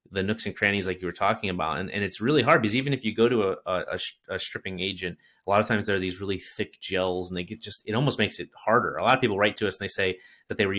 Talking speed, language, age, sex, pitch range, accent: 315 wpm, English, 30-49, male, 95-115 Hz, American